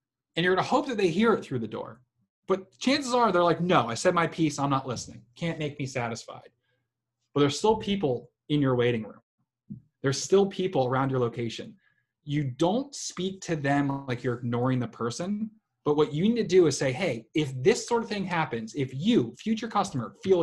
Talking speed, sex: 210 wpm, male